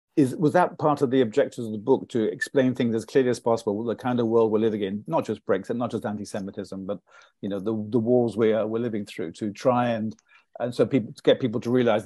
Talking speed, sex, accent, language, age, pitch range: 260 wpm, male, British, English, 50-69, 110-130 Hz